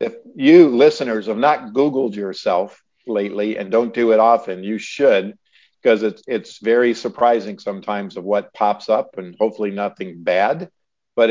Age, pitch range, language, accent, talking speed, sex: 50-69, 100-120 Hz, English, American, 160 wpm, male